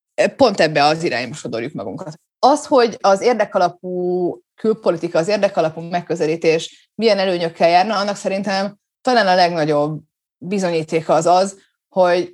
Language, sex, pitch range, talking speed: Hungarian, female, 155-190 Hz, 120 wpm